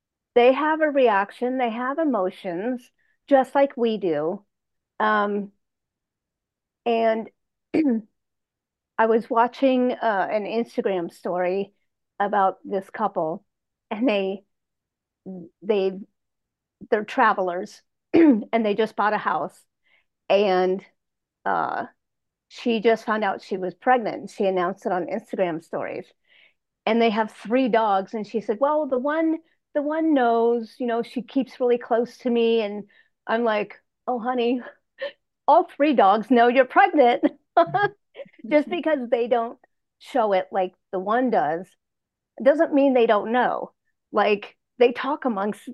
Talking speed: 135 wpm